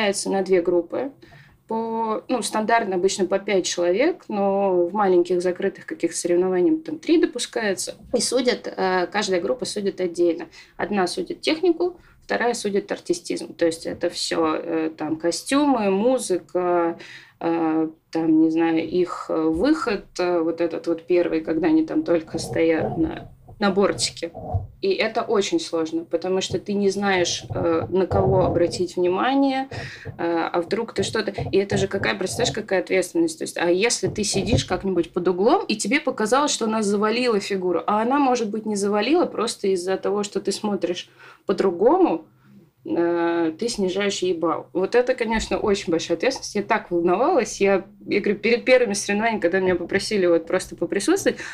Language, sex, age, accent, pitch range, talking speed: Russian, female, 20-39, native, 175-225 Hz, 160 wpm